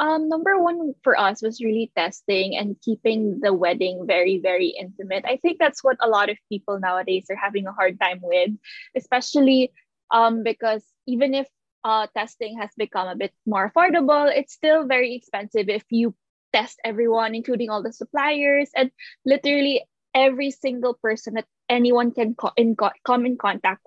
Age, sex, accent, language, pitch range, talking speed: 20-39, female, native, Filipino, 205-270 Hz, 175 wpm